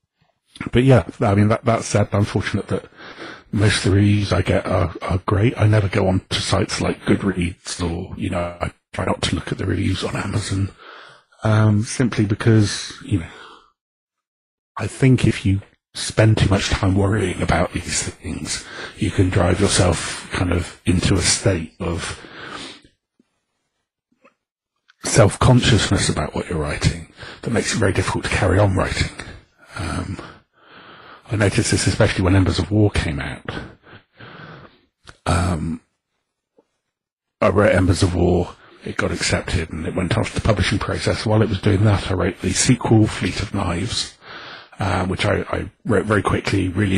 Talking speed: 160 wpm